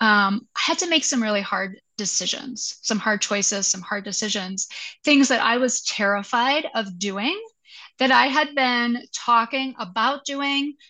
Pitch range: 215-260 Hz